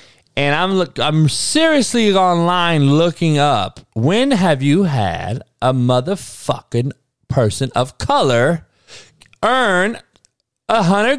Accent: American